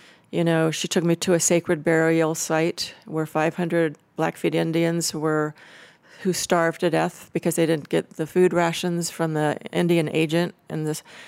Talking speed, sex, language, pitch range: 170 wpm, female, English, 155-175 Hz